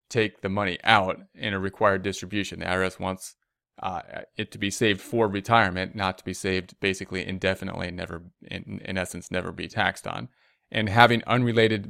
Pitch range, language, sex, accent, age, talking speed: 100-120 Hz, English, male, American, 30-49, 175 wpm